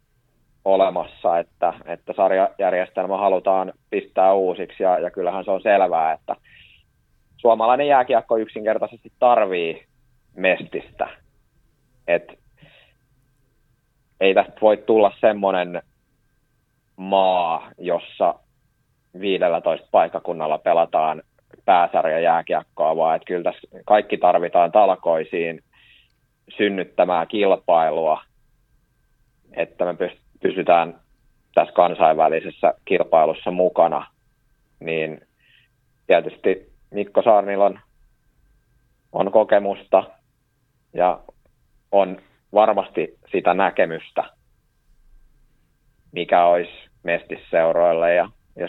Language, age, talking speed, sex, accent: Finnish, 30-49, 80 wpm, male, native